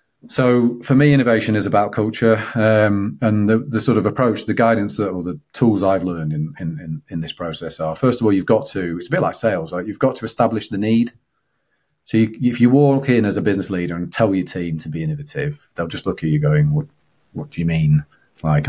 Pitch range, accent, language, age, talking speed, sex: 95-125 Hz, British, English, 30-49, 230 wpm, male